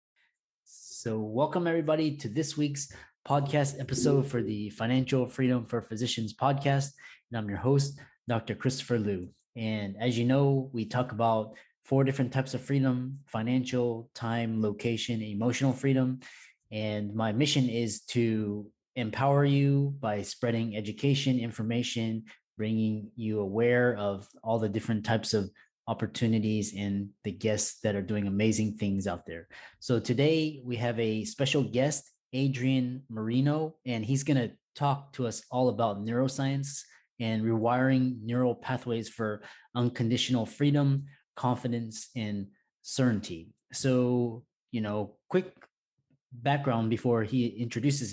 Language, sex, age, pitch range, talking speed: English, male, 30-49, 110-135 Hz, 135 wpm